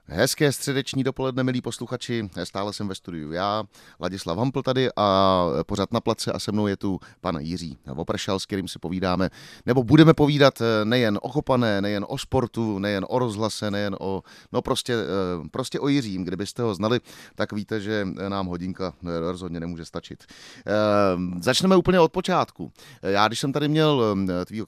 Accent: native